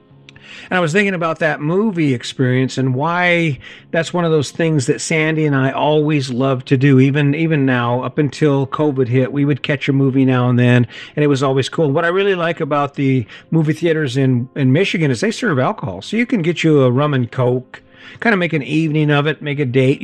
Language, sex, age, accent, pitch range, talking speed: English, male, 50-69, American, 130-160 Hz, 230 wpm